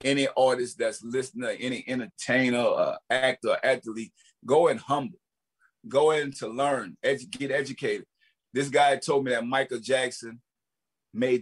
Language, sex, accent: English, male, American